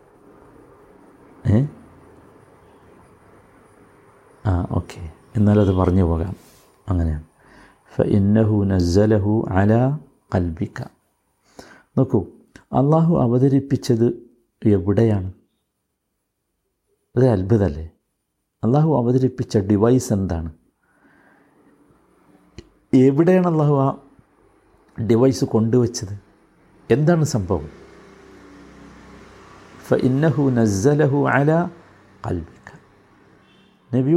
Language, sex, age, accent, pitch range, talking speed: Malayalam, male, 60-79, native, 95-130 Hz, 60 wpm